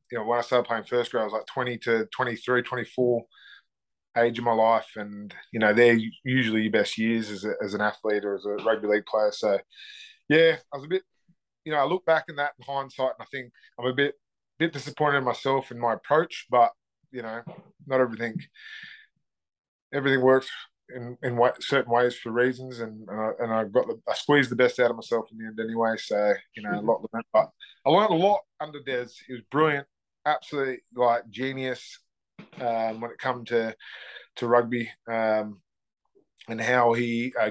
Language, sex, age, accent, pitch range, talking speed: English, male, 20-39, Australian, 110-130 Hz, 205 wpm